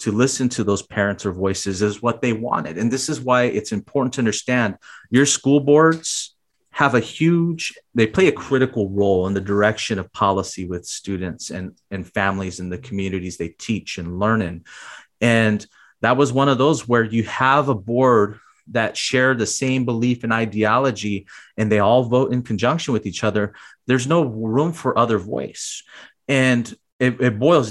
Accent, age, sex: American, 30-49, male